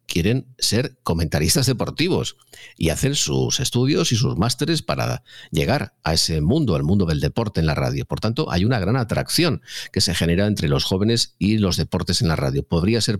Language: Spanish